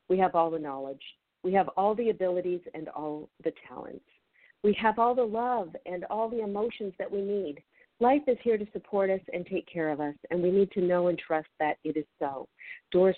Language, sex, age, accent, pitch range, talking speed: English, female, 50-69, American, 160-205 Hz, 225 wpm